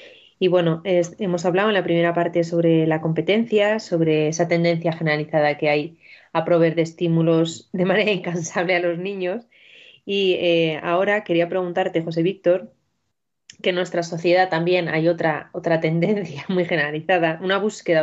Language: Spanish